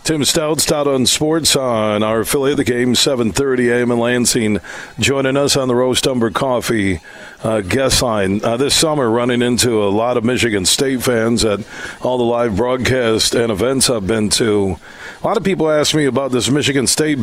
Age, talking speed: 50-69, 195 wpm